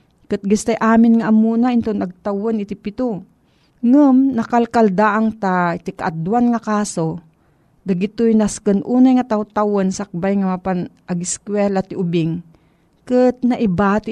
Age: 40-59